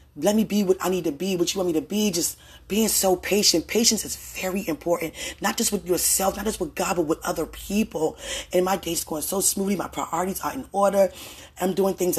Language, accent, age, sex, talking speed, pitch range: English, American, 20-39, female, 235 wpm, 180-225 Hz